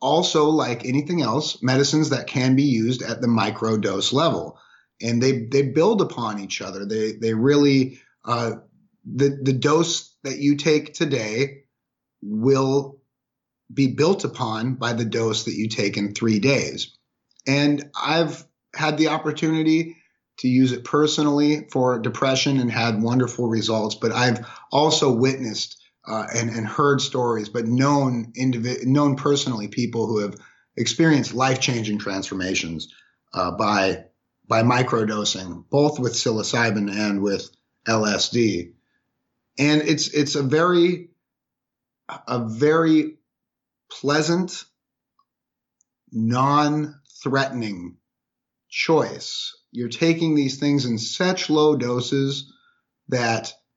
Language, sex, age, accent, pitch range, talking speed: English, male, 30-49, American, 115-145 Hz, 120 wpm